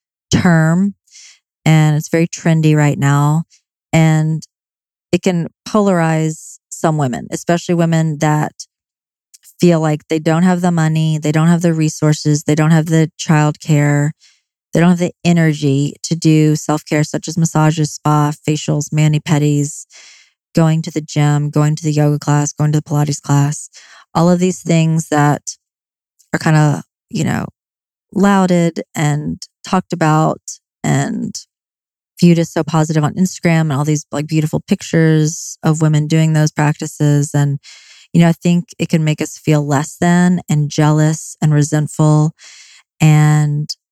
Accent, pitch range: American, 150-170 Hz